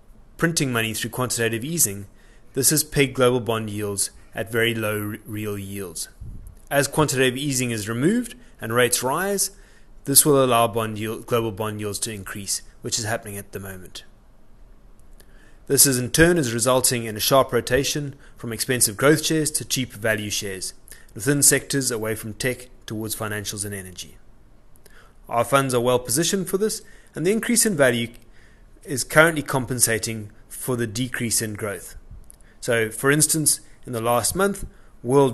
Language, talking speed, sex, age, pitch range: English, 160 wpm, male, 20-39, 110-140 Hz